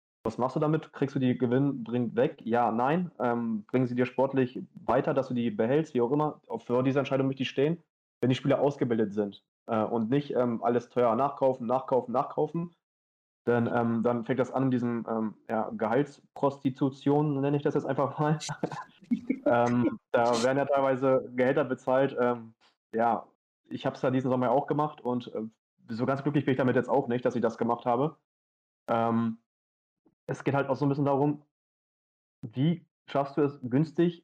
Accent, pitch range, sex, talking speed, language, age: German, 120-145 Hz, male, 190 wpm, German, 20-39